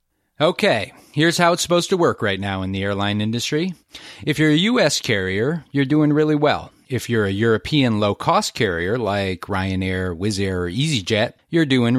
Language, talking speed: English, 180 wpm